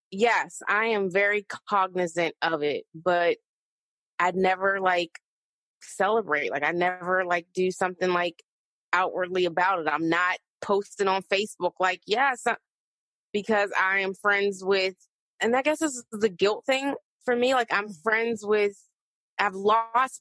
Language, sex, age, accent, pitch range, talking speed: English, female, 20-39, American, 180-215 Hz, 150 wpm